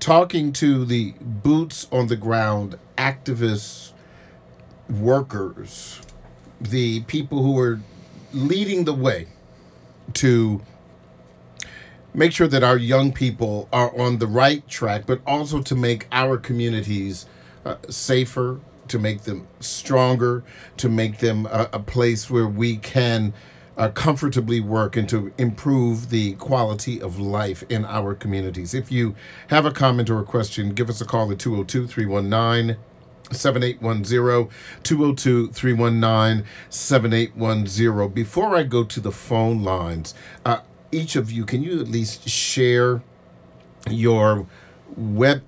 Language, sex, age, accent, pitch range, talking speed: English, male, 50-69, American, 105-130 Hz, 125 wpm